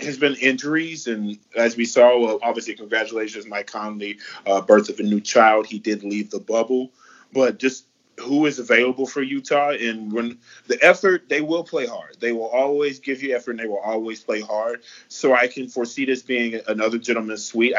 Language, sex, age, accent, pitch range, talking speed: English, male, 30-49, American, 110-130 Hz, 195 wpm